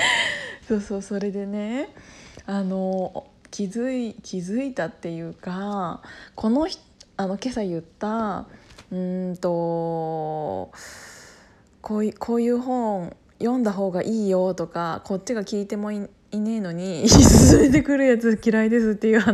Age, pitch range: 20-39, 180-230 Hz